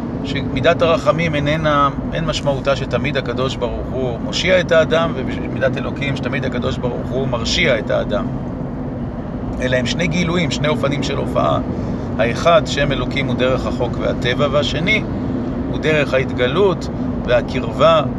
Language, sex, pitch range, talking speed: Hebrew, male, 125-150 Hz, 135 wpm